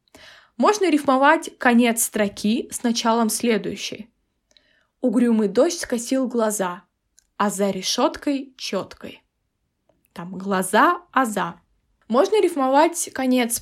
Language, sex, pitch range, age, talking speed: Russian, female, 210-265 Hz, 20-39, 95 wpm